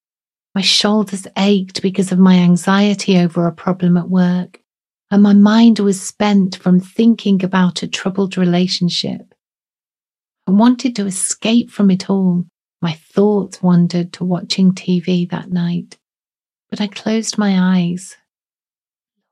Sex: female